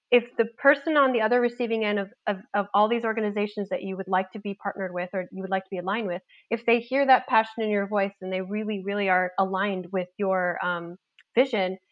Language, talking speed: English, 235 wpm